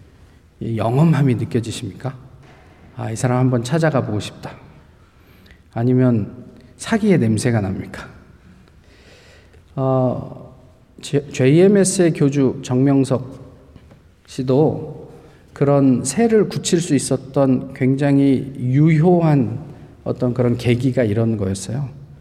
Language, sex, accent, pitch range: Korean, male, native, 120-150 Hz